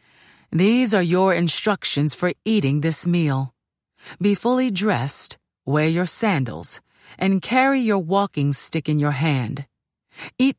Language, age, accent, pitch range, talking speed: English, 40-59, American, 145-195 Hz, 130 wpm